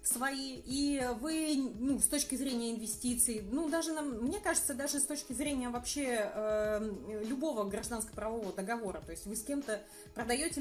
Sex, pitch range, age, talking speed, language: female, 215-280 Hz, 30-49, 165 wpm, Russian